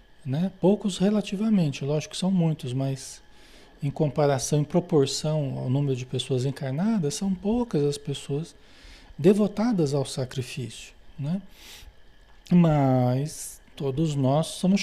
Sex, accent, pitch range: male, Brazilian, 140-185 Hz